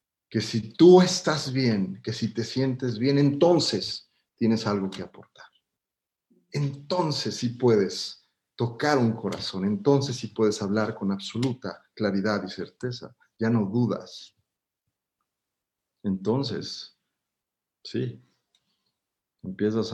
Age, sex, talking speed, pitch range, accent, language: 50-69, male, 110 wpm, 100-125 Hz, Mexican, Spanish